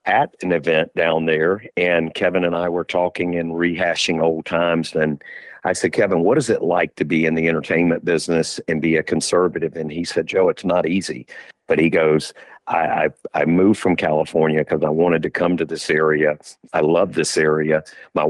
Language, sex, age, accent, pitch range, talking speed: English, male, 50-69, American, 80-85 Hz, 200 wpm